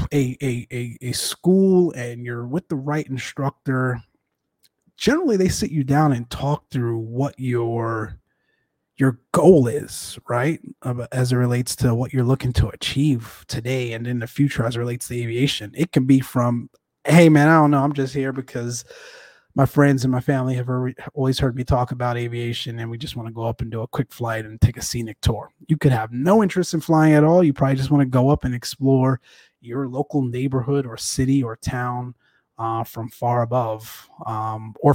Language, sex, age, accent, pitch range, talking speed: English, male, 30-49, American, 120-145 Hz, 195 wpm